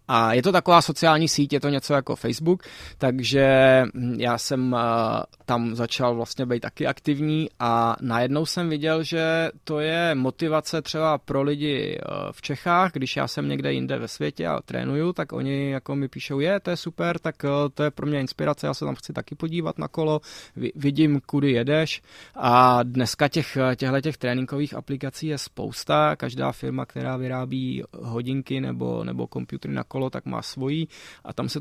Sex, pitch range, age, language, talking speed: male, 120-150 Hz, 20-39, Czech, 175 wpm